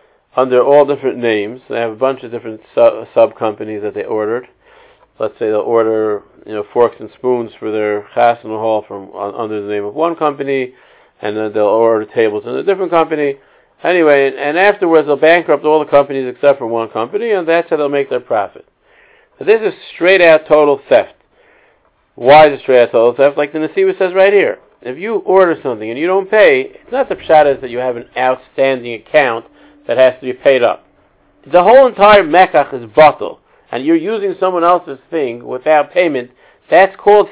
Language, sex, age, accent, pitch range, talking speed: English, male, 50-69, American, 125-190 Hz, 200 wpm